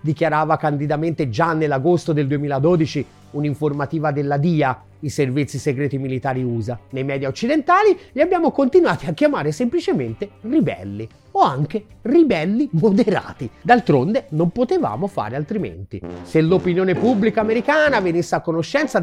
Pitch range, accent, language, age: 145-230 Hz, native, Italian, 30-49